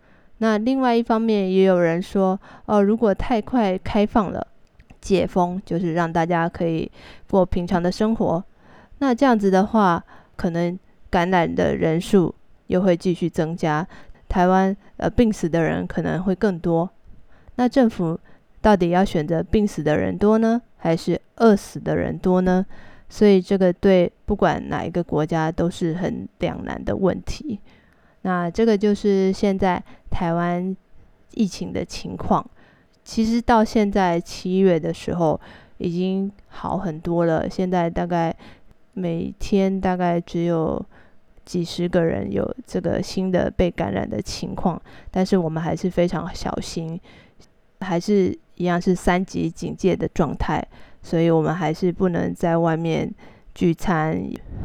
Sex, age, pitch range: female, 20-39, 170-200 Hz